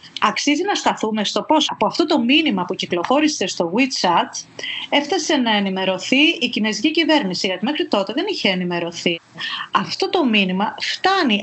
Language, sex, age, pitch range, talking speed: Greek, female, 30-49, 190-300 Hz, 150 wpm